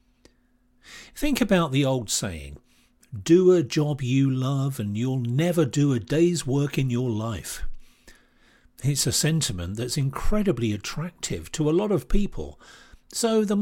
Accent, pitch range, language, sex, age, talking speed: British, 115-170 Hz, English, male, 50-69, 145 wpm